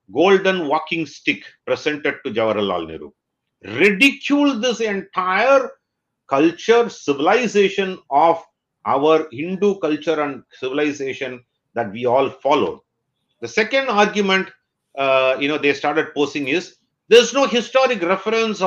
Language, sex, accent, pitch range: English, male, Indian, 145-210 Hz